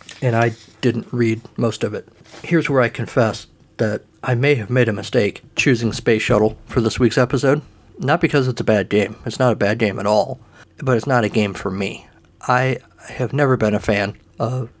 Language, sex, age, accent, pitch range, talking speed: English, male, 50-69, American, 105-125 Hz, 210 wpm